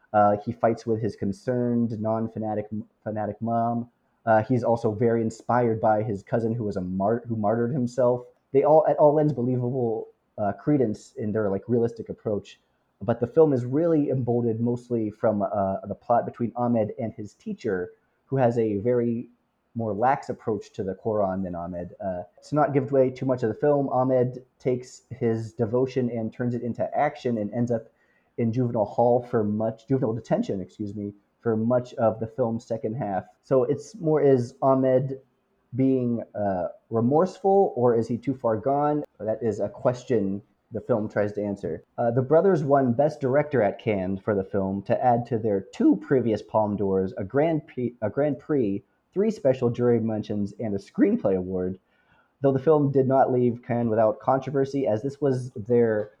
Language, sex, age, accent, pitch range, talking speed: English, male, 30-49, American, 110-130 Hz, 180 wpm